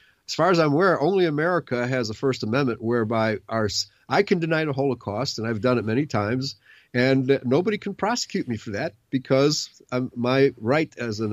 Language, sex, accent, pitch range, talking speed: English, male, American, 120-175 Hz, 190 wpm